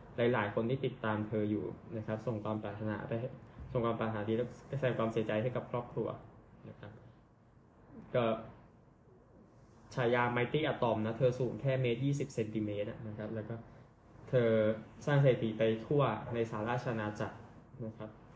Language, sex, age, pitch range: Thai, male, 10-29, 105-120 Hz